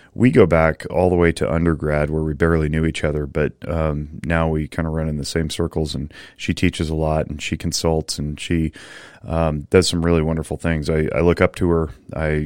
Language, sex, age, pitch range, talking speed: English, male, 30-49, 75-85 Hz, 230 wpm